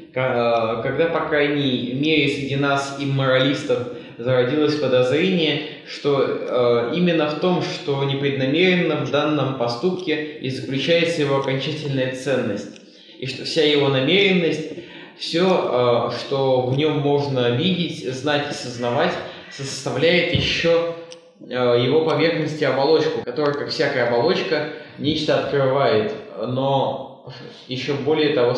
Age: 20-39